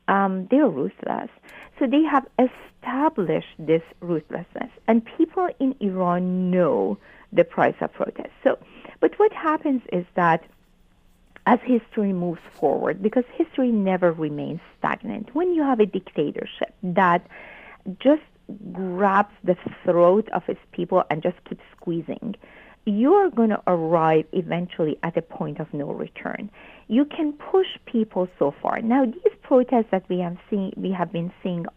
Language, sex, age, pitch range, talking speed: English, female, 50-69, 175-240 Hz, 150 wpm